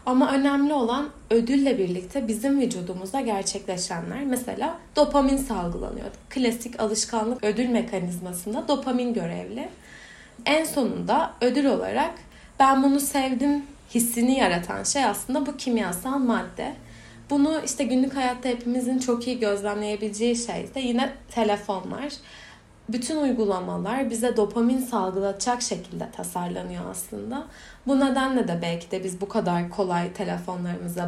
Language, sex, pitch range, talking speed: Turkish, female, 205-265 Hz, 120 wpm